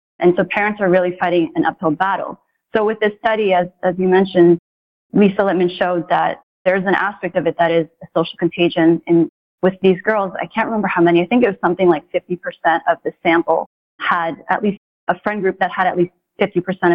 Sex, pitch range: female, 170-200 Hz